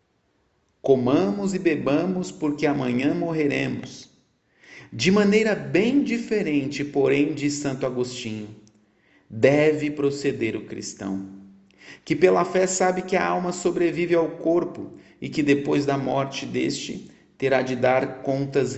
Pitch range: 130-165 Hz